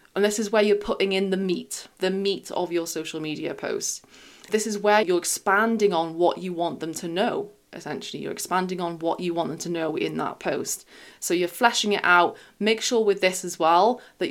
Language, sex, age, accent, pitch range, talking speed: English, female, 20-39, British, 170-205 Hz, 220 wpm